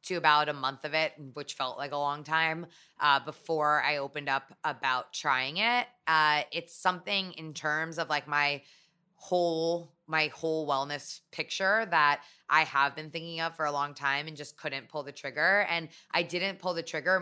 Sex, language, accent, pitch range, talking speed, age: female, English, American, 145-175 Hz, 190 wpm, 20-39